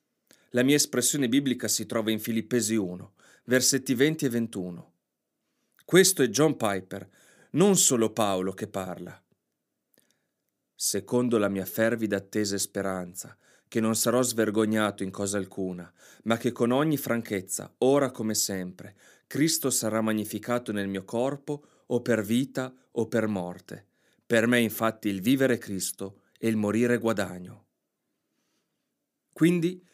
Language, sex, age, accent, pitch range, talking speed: Italian, male, 30-49, native, 105-145 Hz, 135 wpm